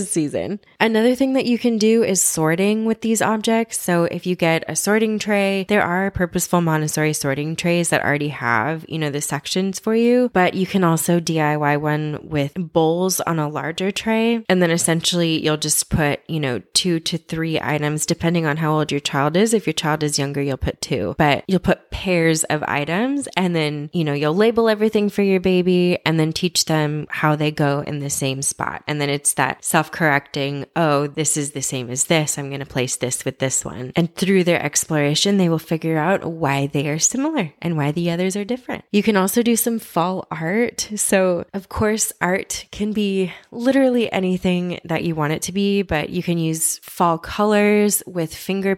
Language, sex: English, female